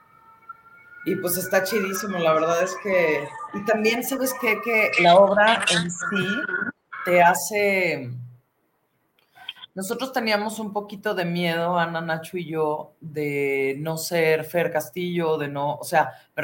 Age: 30-49